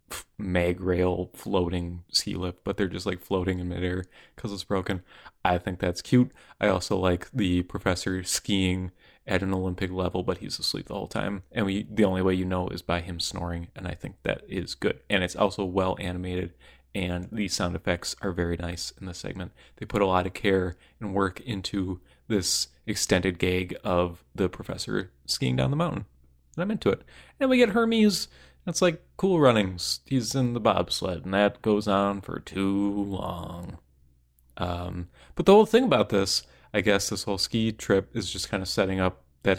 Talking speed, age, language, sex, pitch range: 195 wpm, 20-39, English, male, 90-105 Hz